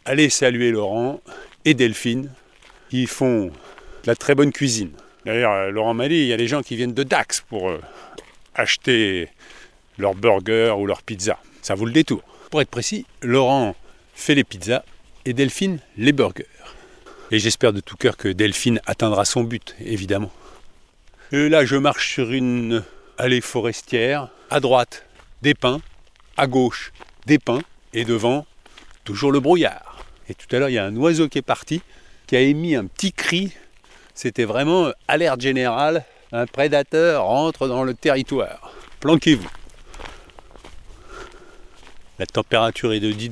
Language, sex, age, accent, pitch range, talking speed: French, male, 50-69, French, 115-150 Hz, 155 wpm